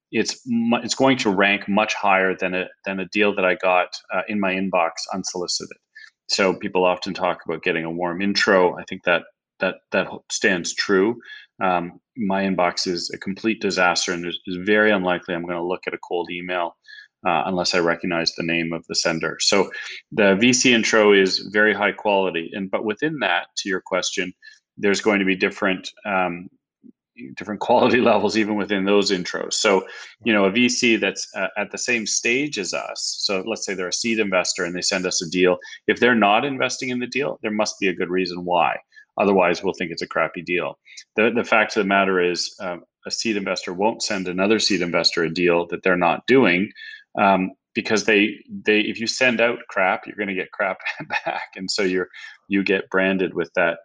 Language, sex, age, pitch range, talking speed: English, male, 30-49, 90-110 Hz, 205 wpm